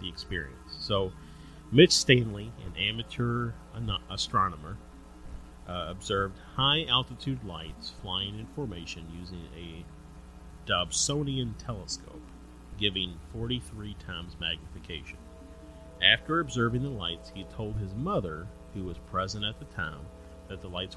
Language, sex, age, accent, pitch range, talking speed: English, male, 40-59, American, 85-110 Hz, 115 wpm